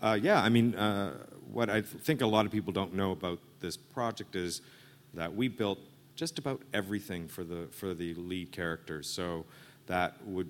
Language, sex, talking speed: English, male, 195 wpm